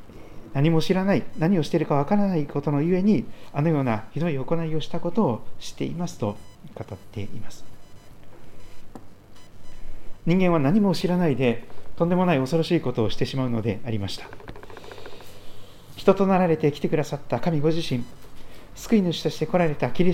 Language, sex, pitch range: Japanese, male, 110-165 Hz